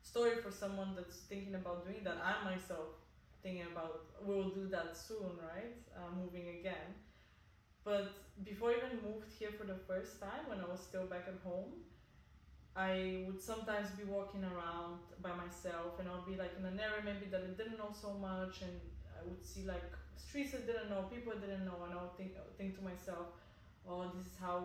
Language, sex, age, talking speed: English, female, 20-39, 210 wpm